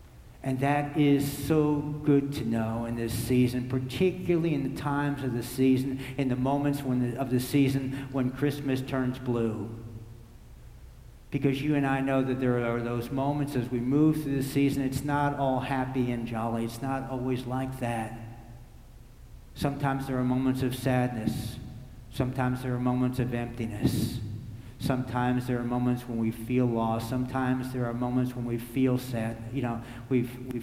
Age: 60-79